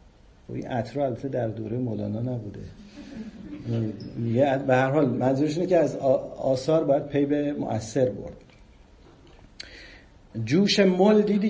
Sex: male